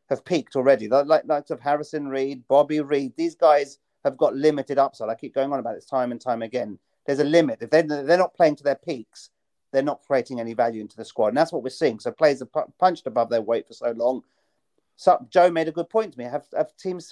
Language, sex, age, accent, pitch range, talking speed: English, male, 40-59, British, 125-155 Hz, 250 wpm